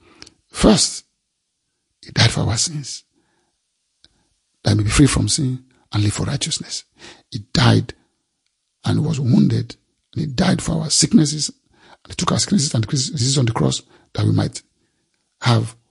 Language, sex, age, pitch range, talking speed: English, male, 50-69, 115-155 Hz, 160 wpm